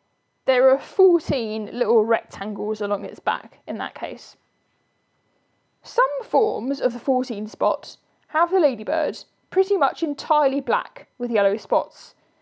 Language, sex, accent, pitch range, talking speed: English, female, British, 230-295 Hz, 130 wpm